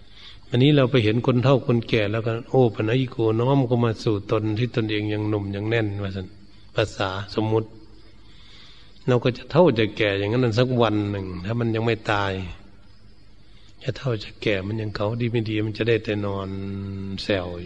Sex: male